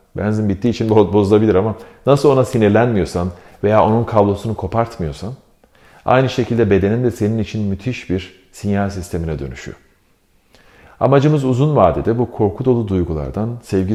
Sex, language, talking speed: male, Turkish, 135 wpm